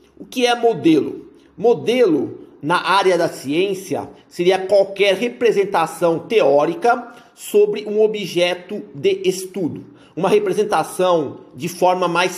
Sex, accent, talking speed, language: male, Brazilian, 110 wpm, Portuguese